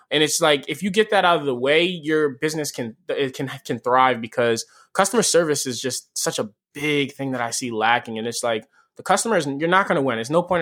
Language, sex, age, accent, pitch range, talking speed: English, male, 20-39, American, 125-170 Hz, 245 wpm